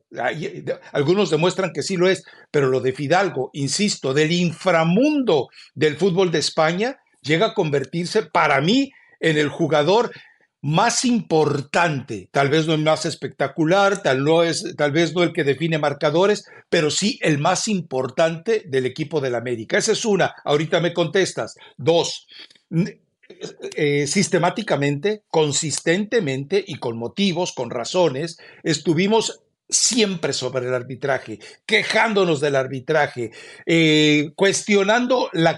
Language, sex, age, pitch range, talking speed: Spanish, male, 60-79, 145-200 Hz, 135 wpm